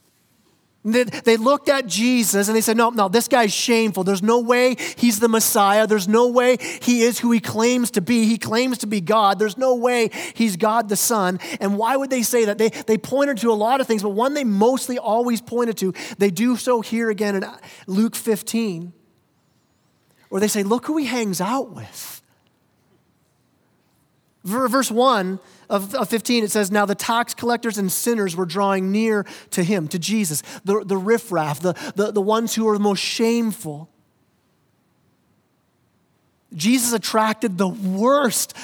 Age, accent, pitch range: 30-49, American, 205-245 Hz